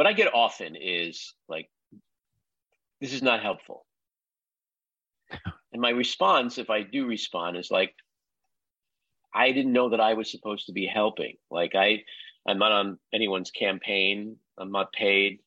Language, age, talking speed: English, 50-69, 145 wpm